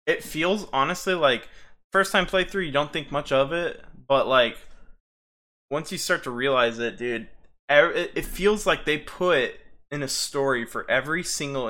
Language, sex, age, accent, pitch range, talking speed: English, male, 20-39, American, 105-145 Hz, 170 wpm